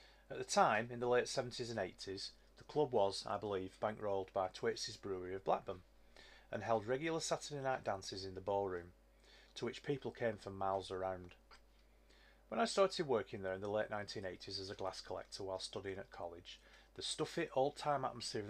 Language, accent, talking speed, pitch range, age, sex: English, British, 180 wpm, 95-125 Hz, 30-49, male